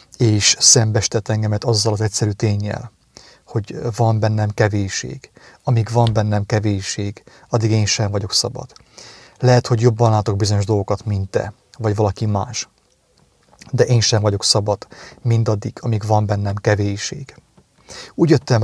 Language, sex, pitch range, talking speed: English, male, 105-115 Hz, 140 wpm